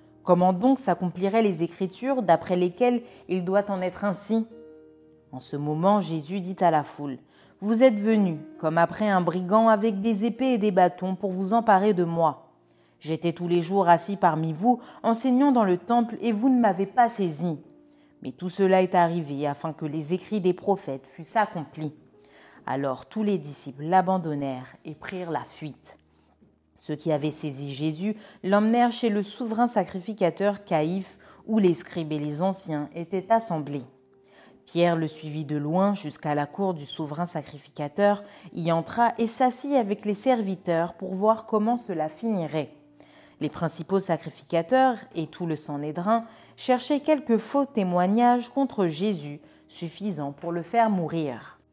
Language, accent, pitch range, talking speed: French, French, 160-215 Hz, 160 wpm